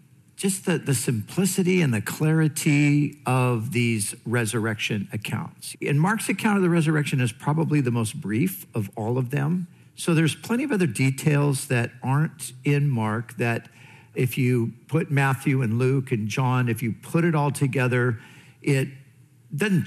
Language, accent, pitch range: English, American, 120-155 Hz